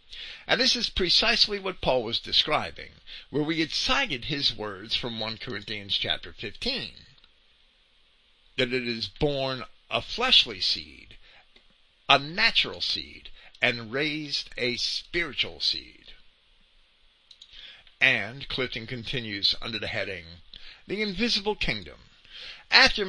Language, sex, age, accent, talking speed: English, male, 50-69, American, 115 wpm